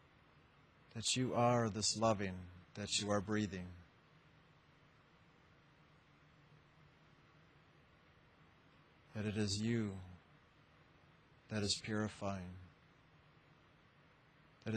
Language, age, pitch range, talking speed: English, 50-69, 95-115 Hz, 70 wpm